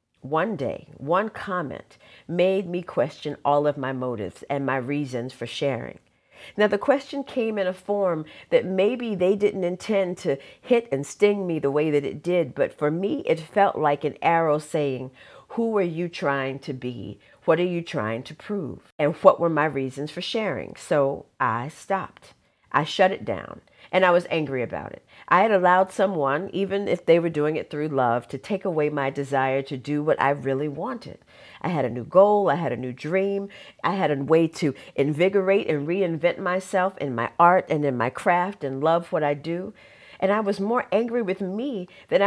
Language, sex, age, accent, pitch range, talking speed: English, female, 50-69, American, 145-195 Hz, 200 wpm